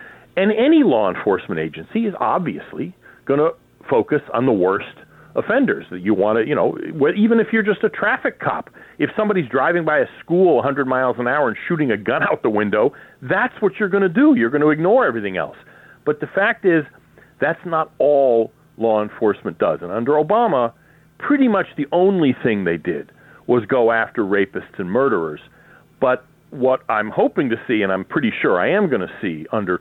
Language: English